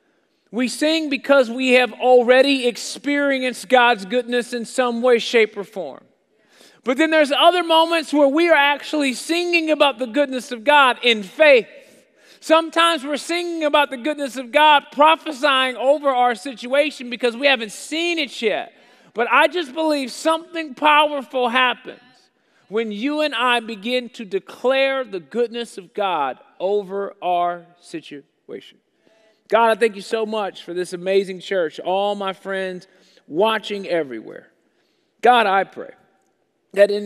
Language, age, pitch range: English, 40-59, 175-265 Hz